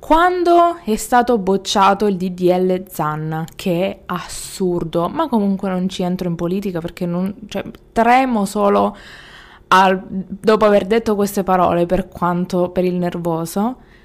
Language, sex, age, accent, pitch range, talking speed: Italian, female, 20-39, native, 180-240 Hz, 140 wpm